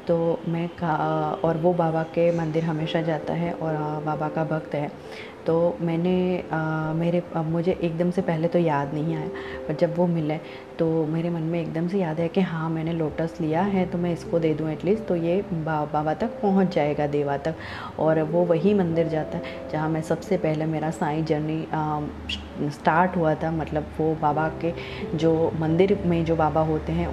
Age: 30-49